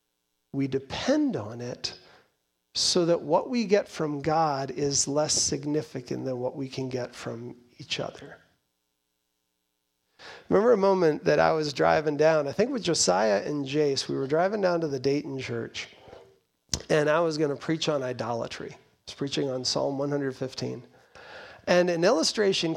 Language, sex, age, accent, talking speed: English, male, 40-59, American, 165 wpm